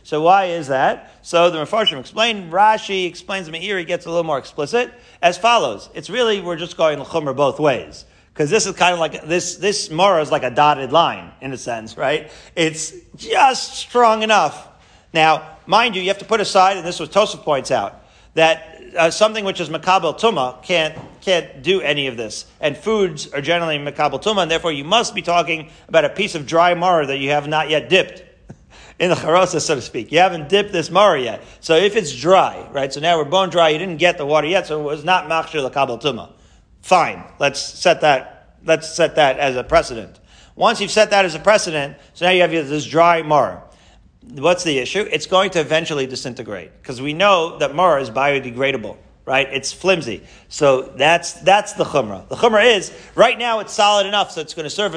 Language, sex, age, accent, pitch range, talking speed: English, male, 40-59, American, 150-200 Hz, 215 wpm